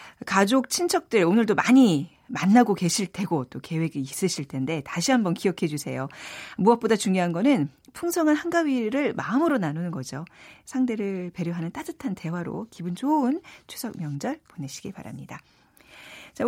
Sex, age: female, 40-59